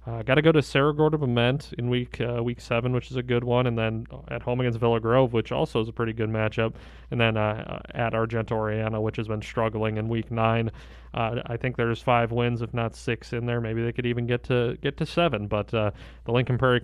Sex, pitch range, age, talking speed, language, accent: male, 115-135 Hz, 30-49, 245 wpm, English, American